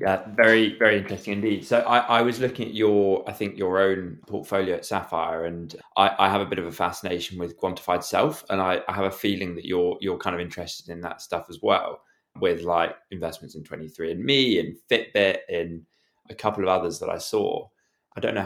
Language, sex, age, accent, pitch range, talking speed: English, male, 20-39, British, 85-105 Hz, 215 wpm